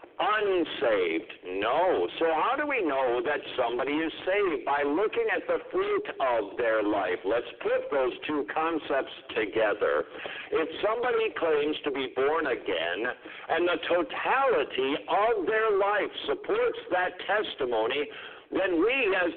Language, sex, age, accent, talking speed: English, male, 60-79, American, 135 wpm